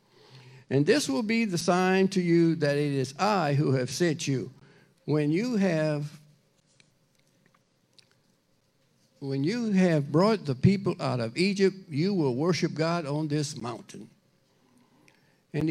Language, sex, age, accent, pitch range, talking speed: English, male, 60-79, American, 150-185 Hz, 140 wpm